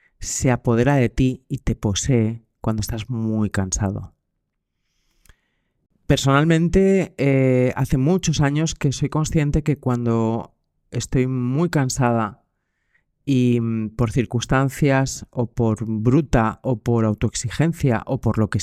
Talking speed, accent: 120 wpm, Spanish